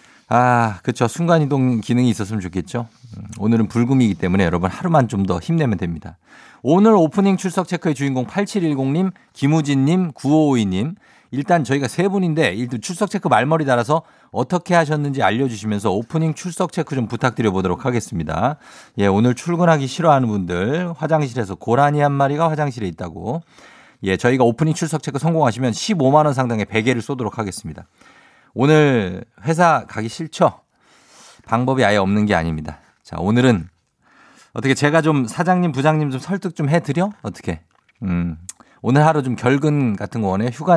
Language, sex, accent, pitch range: Korean, male, native, 105-155 Hz